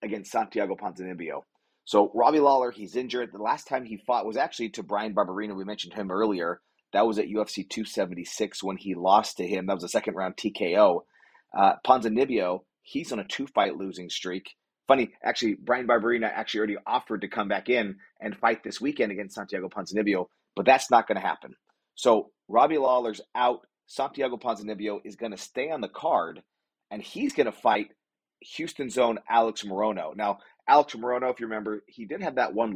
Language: English